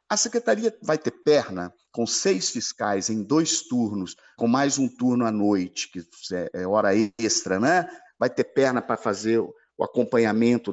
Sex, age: male, 50-69